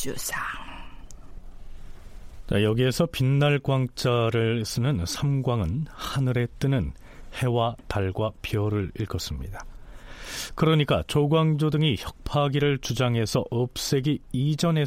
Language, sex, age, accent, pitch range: Korean, male, 40-59, native, 100-145 Hz